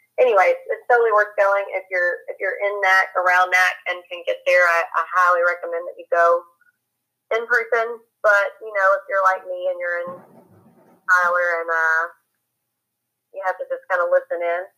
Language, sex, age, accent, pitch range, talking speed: English, female, 30-49, American, 175-205 Hz, 190 wpm